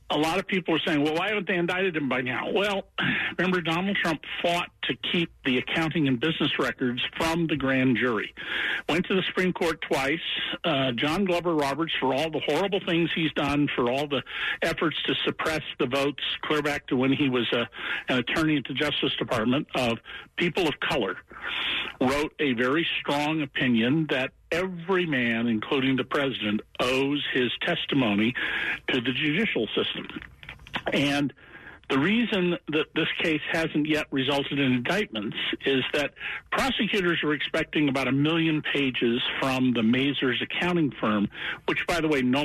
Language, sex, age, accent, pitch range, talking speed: English, male, 60-79, American, 130-170 Hz, 170 wpm